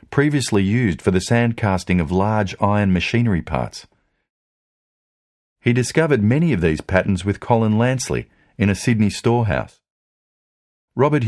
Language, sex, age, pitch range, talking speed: English, male, 50-69, 95-130 Hz, 135 wpm